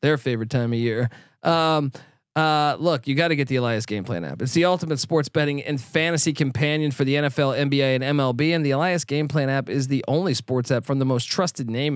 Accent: American